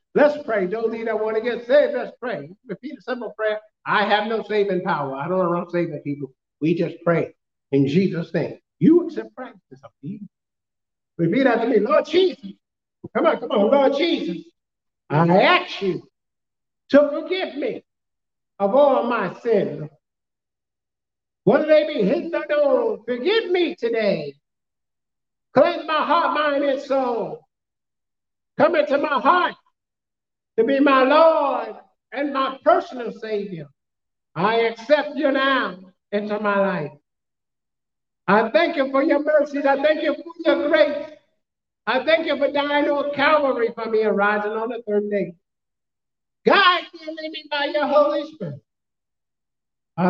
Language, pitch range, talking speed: English, 185-290 Hz, 155 wpm